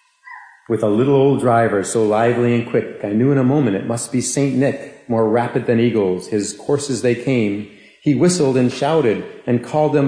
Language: English